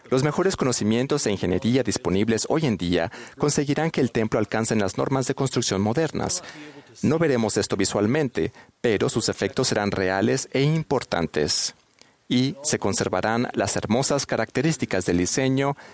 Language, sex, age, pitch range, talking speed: Spanish, male, 40-59, 95-135 Hz, 145 wpm